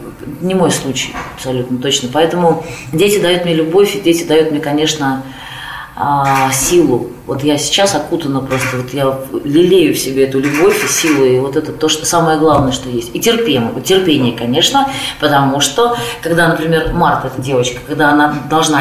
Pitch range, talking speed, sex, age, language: 135-160 Hz, 170 wpm, female, 30-49, Russian